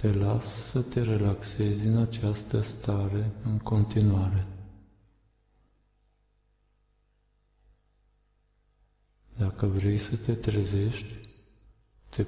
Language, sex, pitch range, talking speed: Romanian, male, 105-115 Hz, 80 wpm